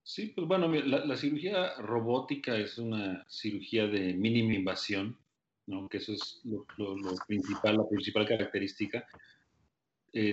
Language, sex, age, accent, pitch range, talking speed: Spanish, male, 40-59, Mexican, 100-115 Hz, 145 wpm